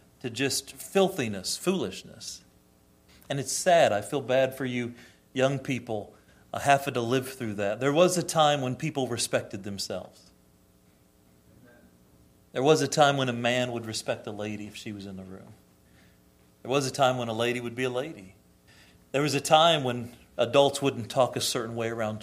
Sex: male